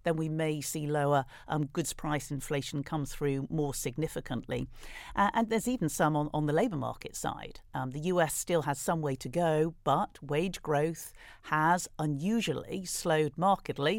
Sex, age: female, 50-69